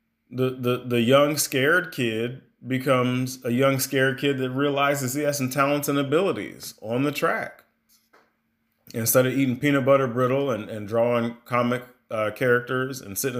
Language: English